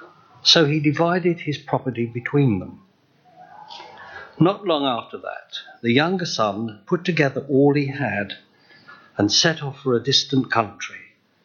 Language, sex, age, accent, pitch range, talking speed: English, male, 60-79, British, 120-170 Hz, 135 wpm